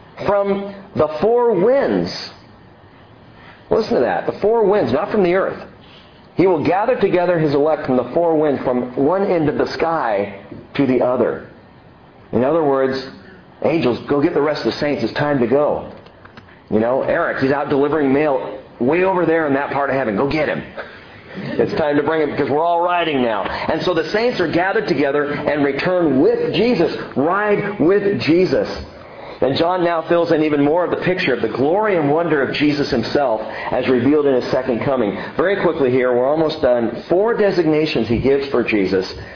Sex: male